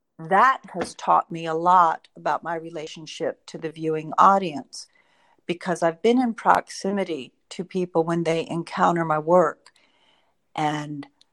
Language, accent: English, American